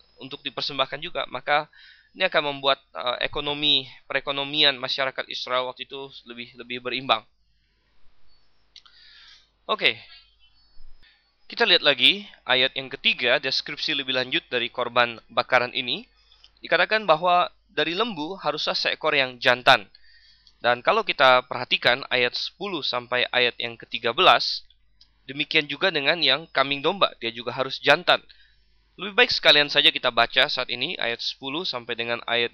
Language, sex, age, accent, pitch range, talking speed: Indonesian, male, 20-39, native, 120-145 Hz, 135 wpm